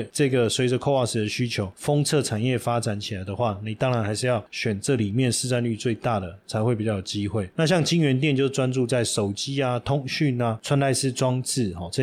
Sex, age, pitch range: male, 20-39, 110-135 Hz